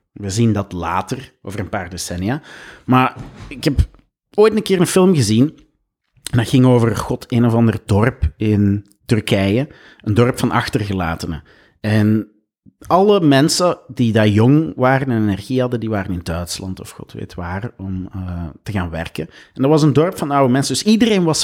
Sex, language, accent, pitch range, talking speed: male, Dutch, Dutch, 100-130 Hz, 185 wpm